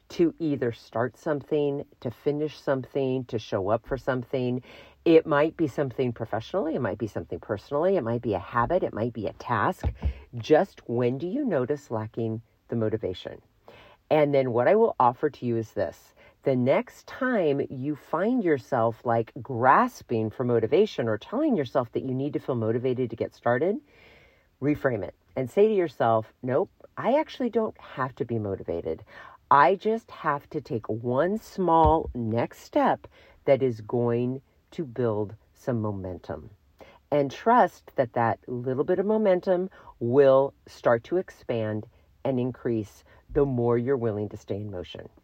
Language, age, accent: English, 50-69, American